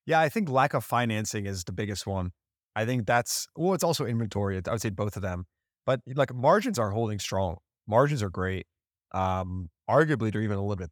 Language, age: English, 30-49